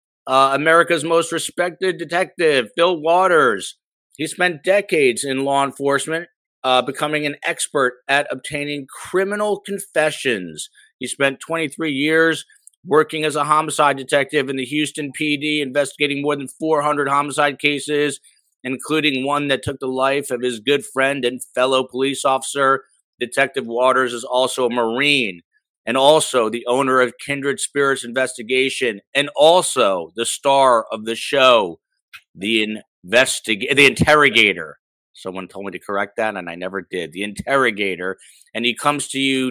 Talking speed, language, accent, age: 145 wpm, English, American, 50-69